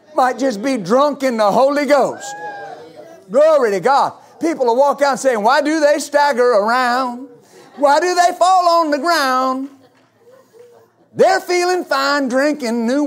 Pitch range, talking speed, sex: 240-300 Hz, 150 wpm, male